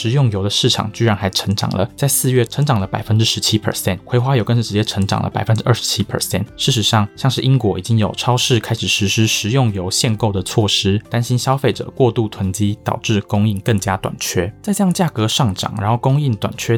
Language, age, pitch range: Chinese, 20-39, 100-125 Hz